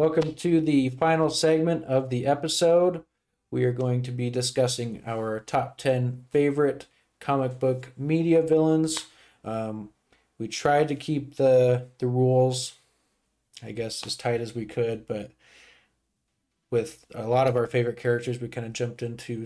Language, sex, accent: English, male, American